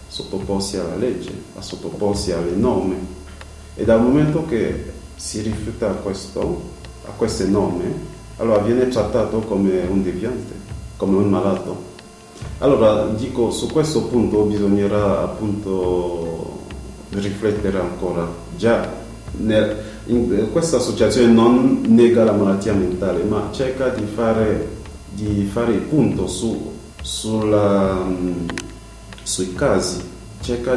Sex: male